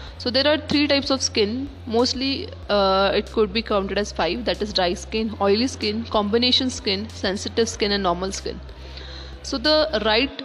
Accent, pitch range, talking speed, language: Indian, 195-240 Hz, 180 wpm, English